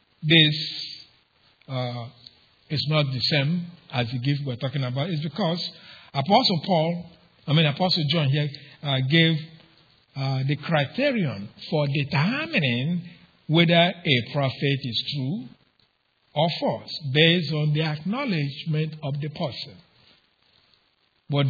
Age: 50-69